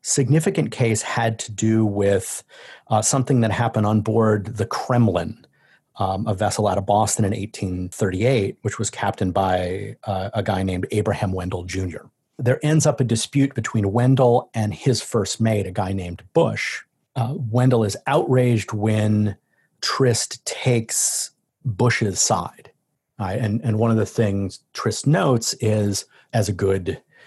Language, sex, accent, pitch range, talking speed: English, male, American, 100-120 Hz, 150 wpm